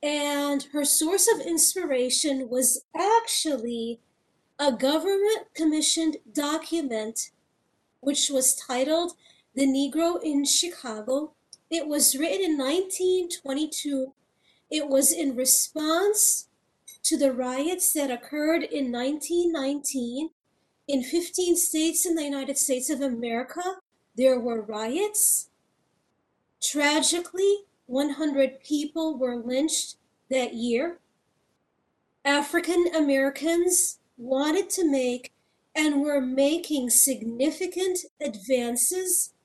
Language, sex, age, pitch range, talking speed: English, female, 40-59, 260-330 Hz, 95 wpm